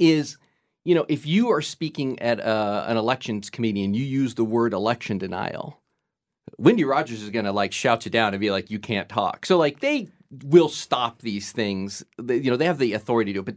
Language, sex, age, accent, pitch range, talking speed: English, male, 40-59, American, 110-150 Hz, 230 wpm